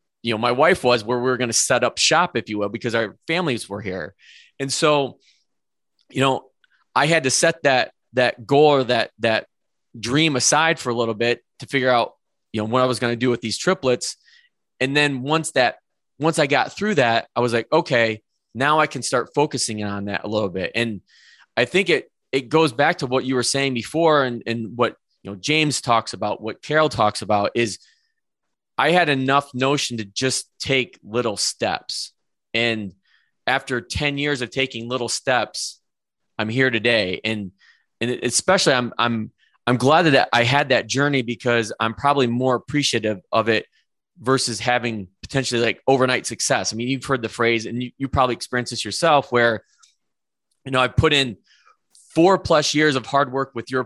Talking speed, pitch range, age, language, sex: 195 wpm, 115-140 Hz, 20-39, English, male